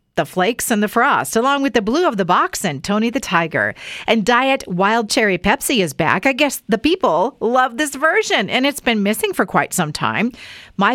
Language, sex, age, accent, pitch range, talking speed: English, female, 40-59, American, 190-275 Hz, 215 wpm